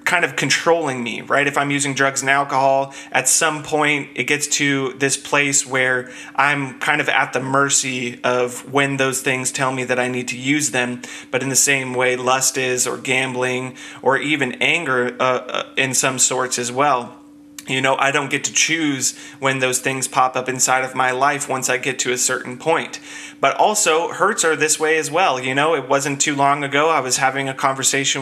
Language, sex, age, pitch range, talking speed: English, male, 30-49, 130-150 Hz, 210 wpm